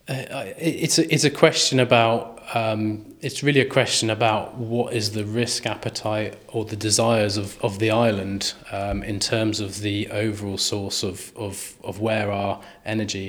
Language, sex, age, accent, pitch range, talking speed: English, male, 20-39, British, 100-115 Hz, 170 wpm